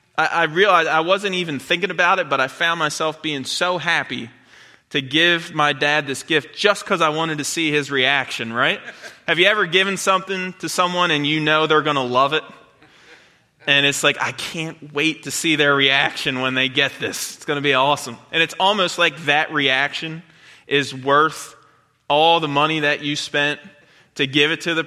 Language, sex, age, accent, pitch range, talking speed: English, male, 20-39, American, 140-175 Hz, 200 wpm